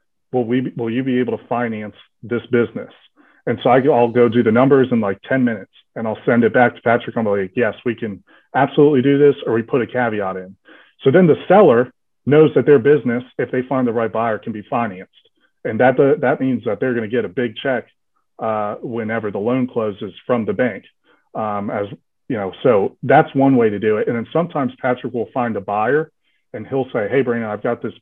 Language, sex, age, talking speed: English, male, 30-49, 225 wpm